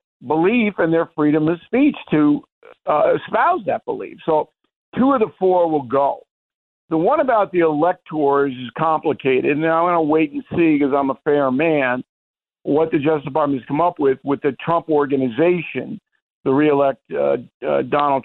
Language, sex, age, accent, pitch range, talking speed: English, male, 50-69, American, 140-180 Hz, 175 wpm